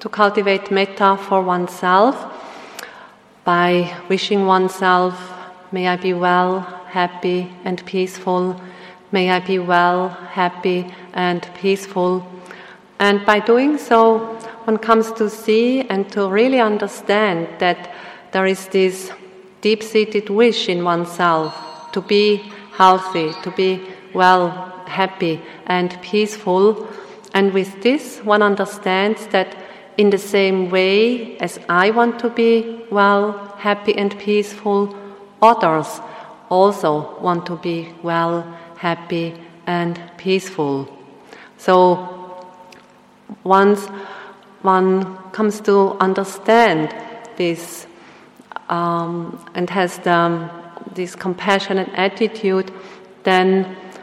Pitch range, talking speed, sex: 180-205 Hz, 105 wpm, female